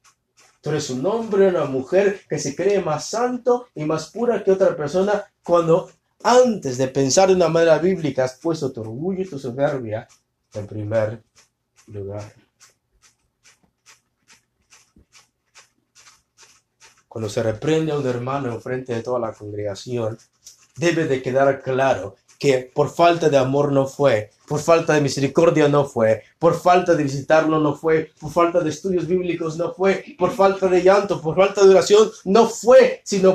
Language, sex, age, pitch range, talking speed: English, male, 30-49, 130-190 Hz, 160 wpm